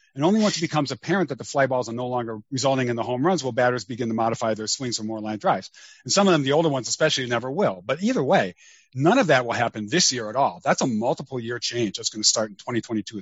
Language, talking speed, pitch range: English, 275 wpm, 115-155 Hz